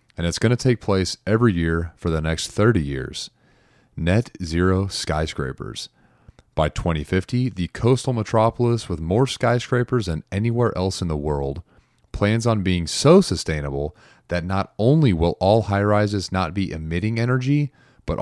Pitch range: 80-110 Hz